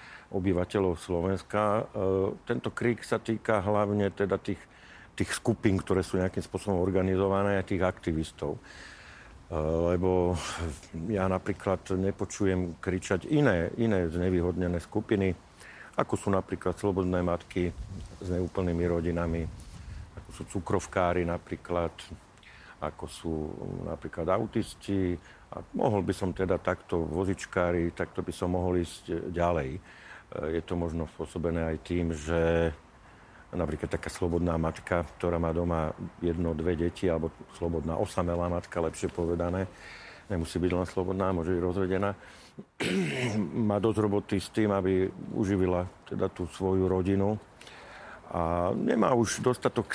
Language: Slovak